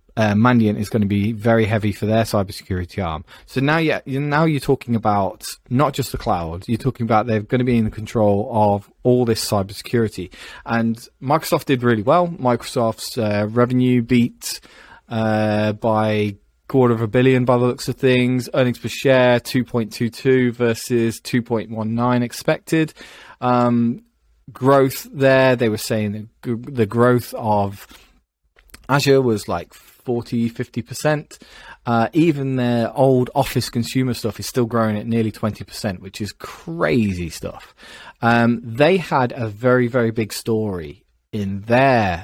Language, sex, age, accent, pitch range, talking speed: English, male, 20-39, British, 105-125 Hz, 150 wpm